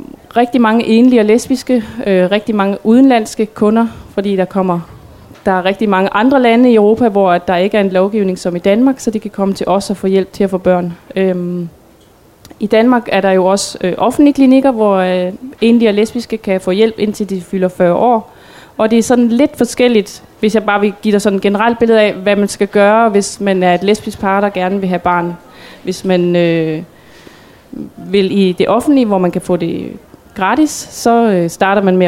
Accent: native